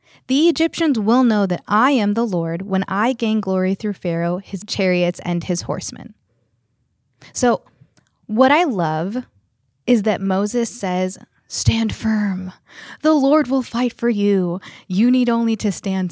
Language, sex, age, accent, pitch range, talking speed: English, female, 20-39, American, 170-230 Hz, 155 wpm